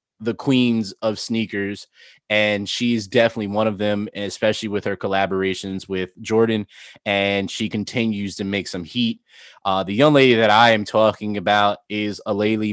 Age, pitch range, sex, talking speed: 20-39, 100-115 Hz, male, 160 wpm